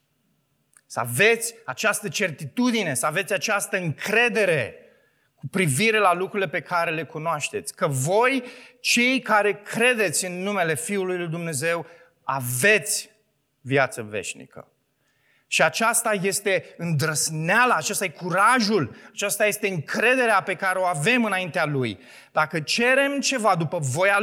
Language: Romanian